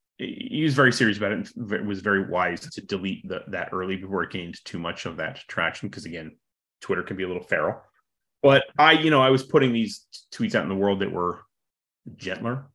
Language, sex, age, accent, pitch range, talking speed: English, male, 30-49, American, 95-125 Hz, 215 wpm